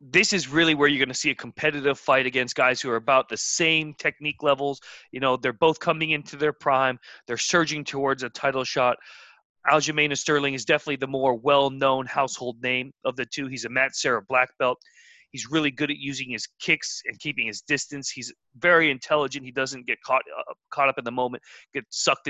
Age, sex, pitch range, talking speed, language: 30-49, male, 125-155 Hz, 210 wpm, English